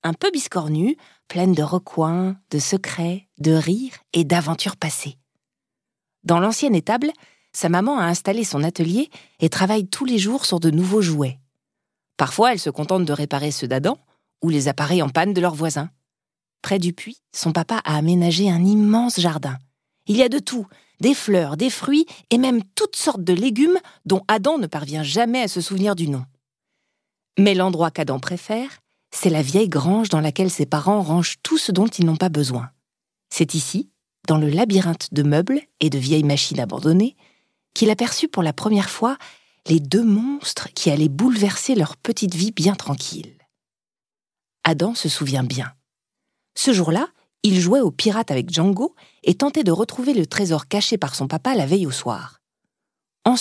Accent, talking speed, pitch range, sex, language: French, 180 wpm, 155-220 Hz, female, French